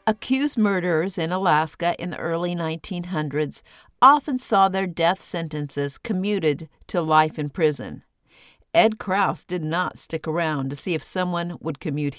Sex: female